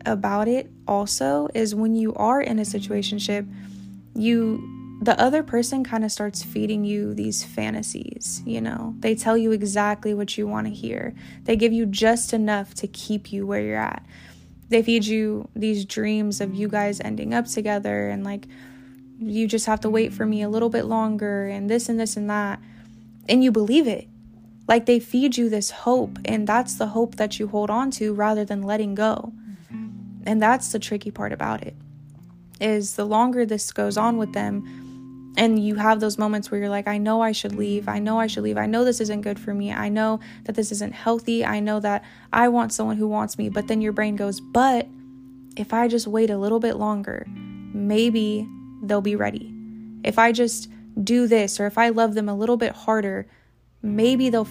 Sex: female